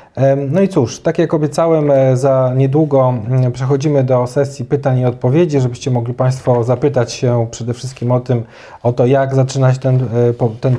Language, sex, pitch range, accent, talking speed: Polish, male, 120-135 Hz, native, 160 wpm